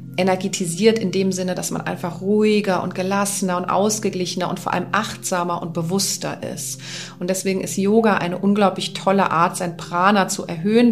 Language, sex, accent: German, female, German